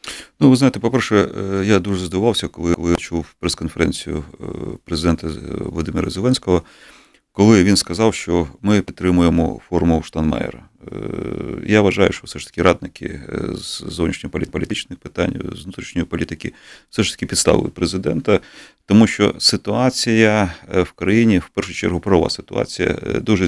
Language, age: Ukrainian, 40-59